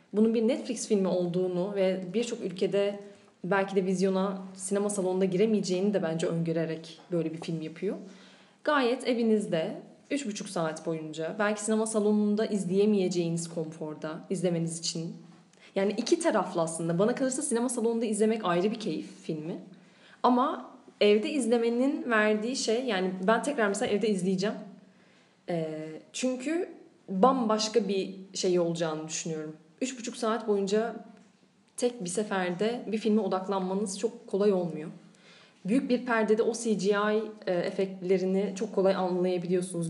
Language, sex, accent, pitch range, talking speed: Turkish, female, native, 175-220 Hz, 130 wpm